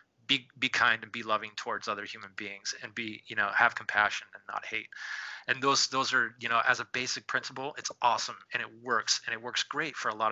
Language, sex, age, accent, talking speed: English, male, 20-39, American, 240 wpm